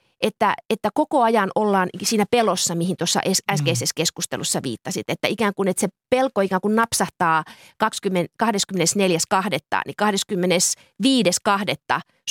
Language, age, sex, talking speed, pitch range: Finnish, 30-49, female, 115 wpm, 185-245 Hz